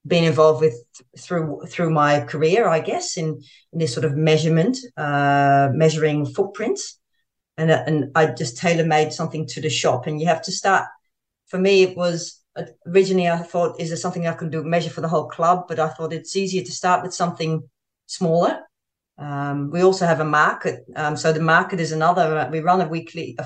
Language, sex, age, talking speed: English, female, 30-49, 200 wpm